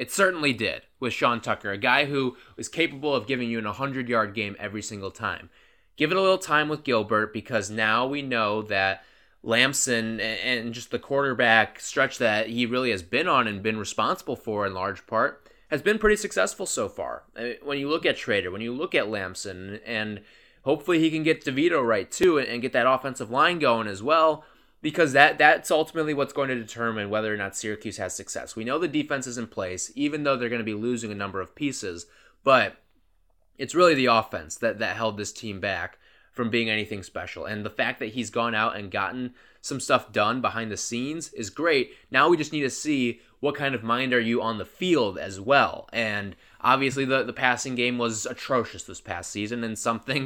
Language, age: English, 20-39